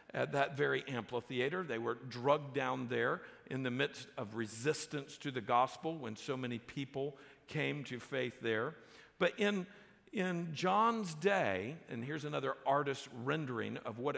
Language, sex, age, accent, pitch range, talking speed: English, male, 50-69, American, 130-175 Hz, 155 wpm